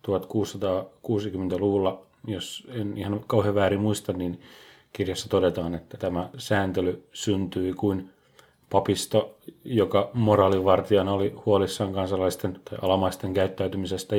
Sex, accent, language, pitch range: male, native, Finnish, 95-105 Hz